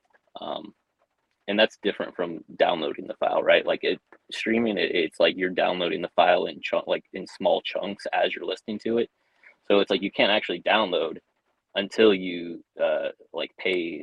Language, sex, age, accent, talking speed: English, male, 20-39, American, 180 wpm